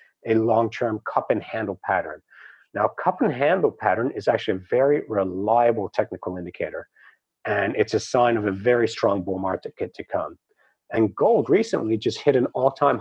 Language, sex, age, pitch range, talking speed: English, male, 40-59, 105-135 Hz, 150 wpm